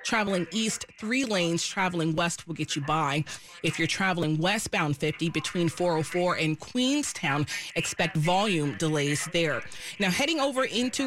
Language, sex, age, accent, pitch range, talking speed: English, female, 30-49, American, 165-225 Hz, 145 wpm